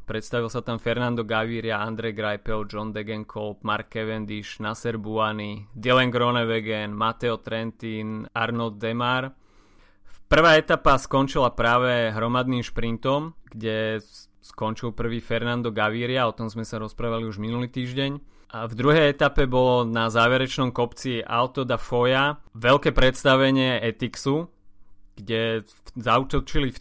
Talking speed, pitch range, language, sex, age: 125 wpm, 110-130 Hz, Slovak, male, 30-49